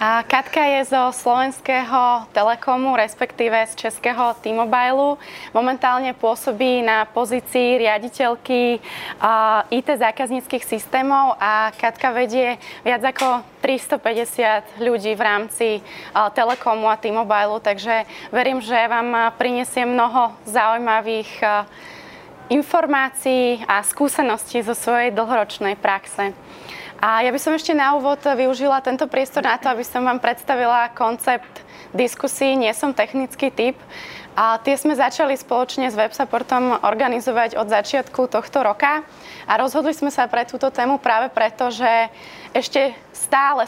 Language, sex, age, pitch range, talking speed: English, female, 20-39, 225-265 Hz, 120 wpm